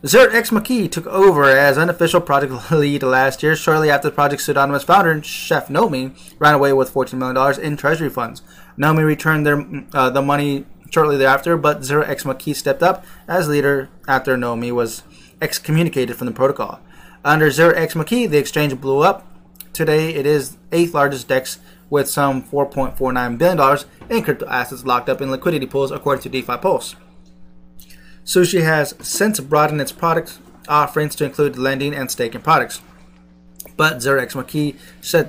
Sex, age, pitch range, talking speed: male, 20-39, 130-155 Hz, 160 wpm